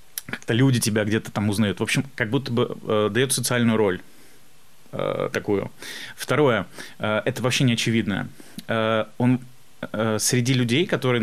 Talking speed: 155 wpm